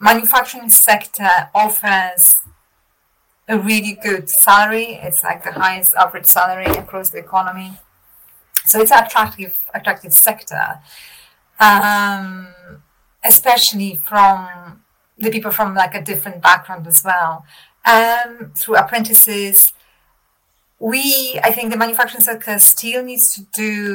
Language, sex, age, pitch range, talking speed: English, female, 30-49, 185-220 Hz, 120 wpm